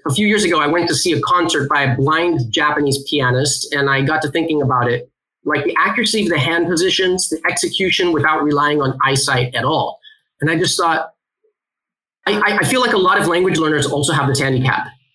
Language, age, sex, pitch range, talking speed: English, 30-49, male, 135-165 Hz, 215 wpm